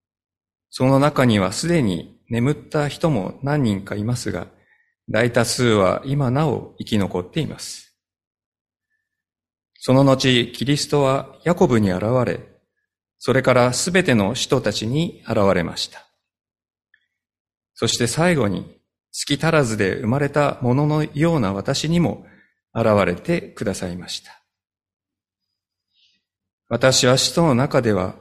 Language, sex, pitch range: Japanese, male, 105-145 Hz